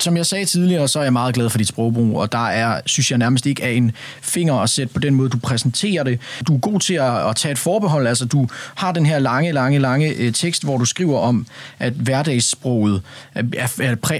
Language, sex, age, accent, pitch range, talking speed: Danish, male, 30-49, native, 120-150 Hz, 230 wpm